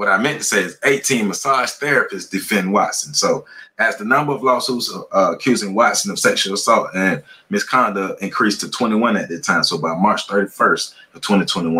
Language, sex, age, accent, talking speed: English, male, 30-49, American, 190 wpm